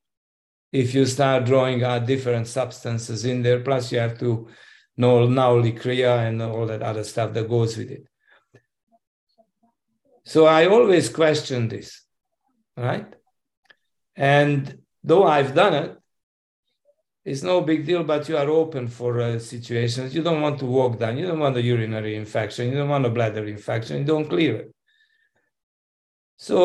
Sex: male